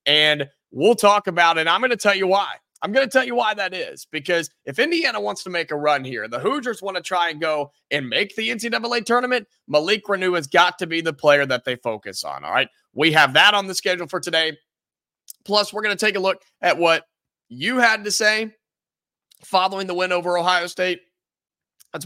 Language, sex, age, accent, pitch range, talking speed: English, male, 30-49, American, 145-200 Hz, 225 wpm